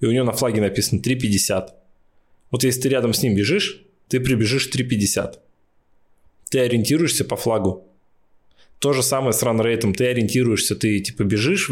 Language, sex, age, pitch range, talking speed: Russian, male, 20-39, 100-120 Hz, 165 wpm